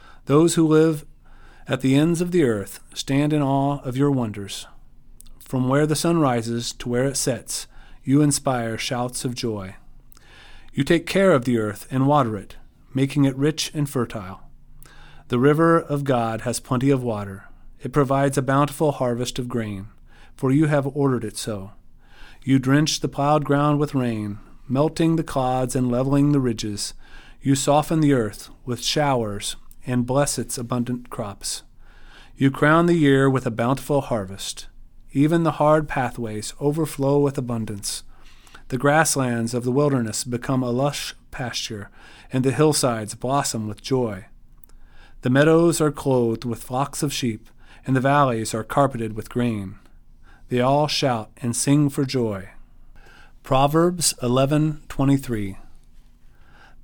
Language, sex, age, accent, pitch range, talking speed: English, male, 40-59, American, 120-145 Hz, 150 wpm